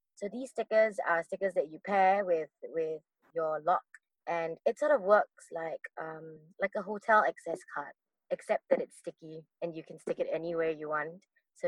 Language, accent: English, Malaysian